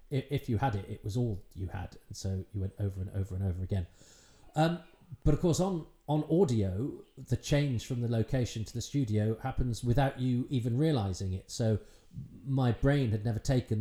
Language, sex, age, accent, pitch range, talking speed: English, male, 40-59, British, 100-130 Hz, 200 wpm